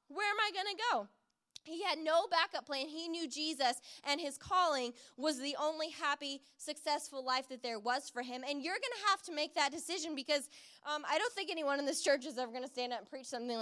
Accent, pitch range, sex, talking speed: American, 275-350 Hz, female, 240 wpm